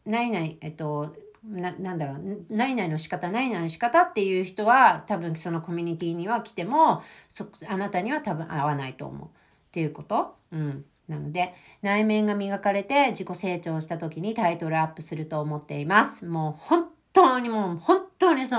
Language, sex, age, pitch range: Japanese, female, 40-59, 165-260 Hz